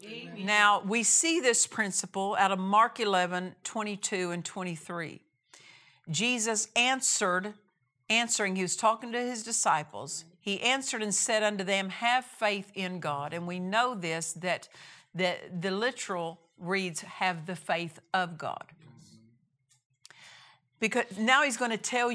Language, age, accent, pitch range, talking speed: English, 50-69, American, 175-230 Hz, 140 wpm